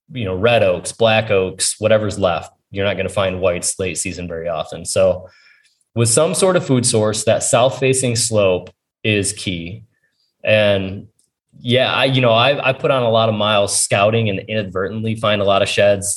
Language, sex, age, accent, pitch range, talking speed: English, male, 20-39, American, 100-115 Hz, 195 wpm